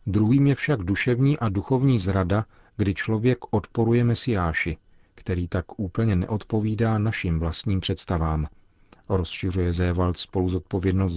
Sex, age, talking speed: male, 40-59, 120 wpm